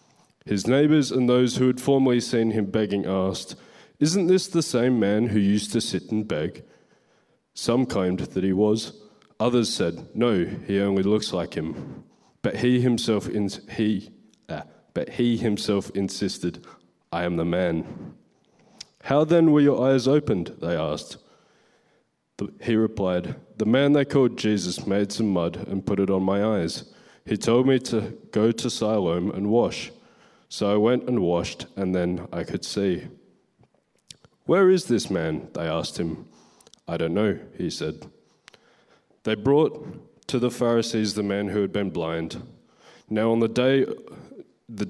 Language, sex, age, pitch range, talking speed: English, male, 20-39, 95-125 Hz, 160 wpm